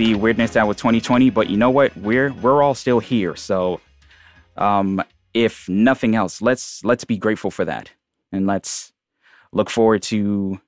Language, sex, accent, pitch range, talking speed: English, male, American, 95-115 Hz, 170 wpm